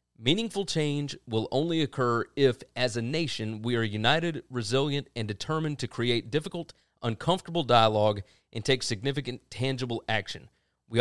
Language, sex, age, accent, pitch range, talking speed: English, male, 30-49, American, 110-140 Hz, 140 wpm